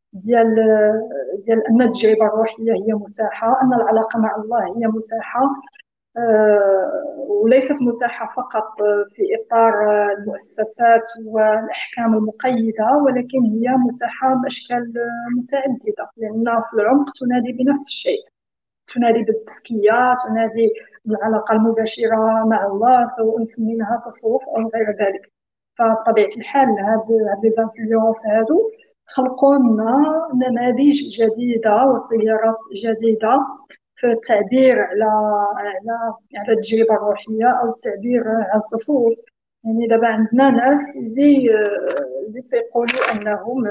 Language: Arabic